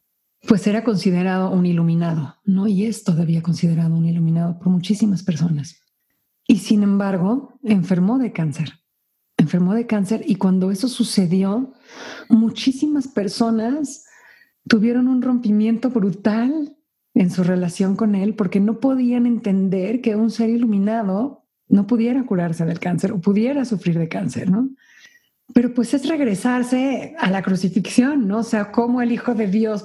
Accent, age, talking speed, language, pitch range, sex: Mexican, 40-59, 145 wpm, Spanish, 180-240 Hz, female